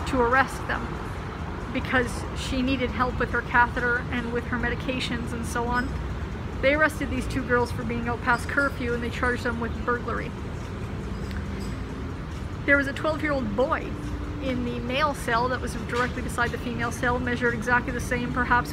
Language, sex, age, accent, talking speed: English, female, 30-49, American, 170 wpm